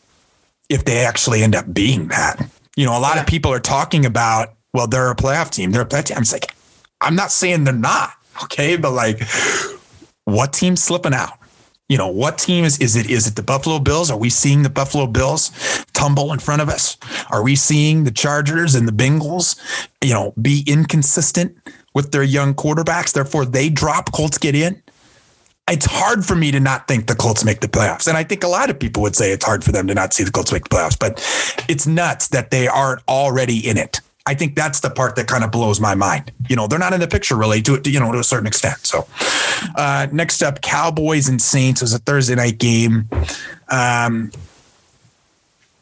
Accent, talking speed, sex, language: American, 220 wpm, male, English